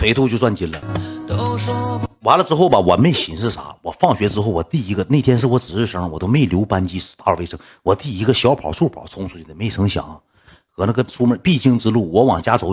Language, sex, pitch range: Chinese, male, 100-135 Hz